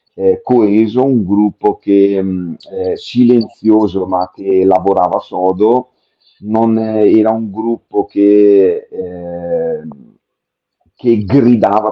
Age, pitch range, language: 40-59, 95-115 Hz, Italian